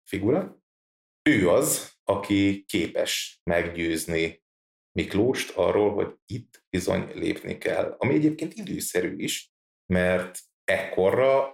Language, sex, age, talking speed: Hungarian, male, 30-49, 100 wpm